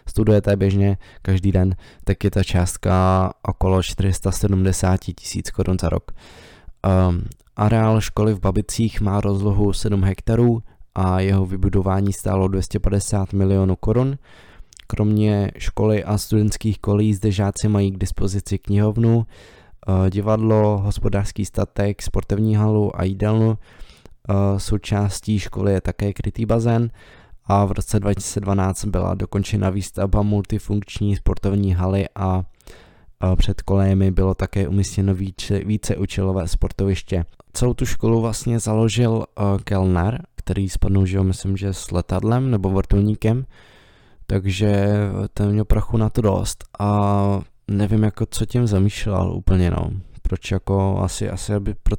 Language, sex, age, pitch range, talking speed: Czech, male, 20-39, 95-105 Hz, 130 wpm